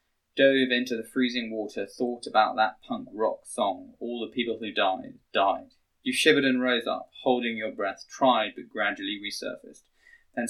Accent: British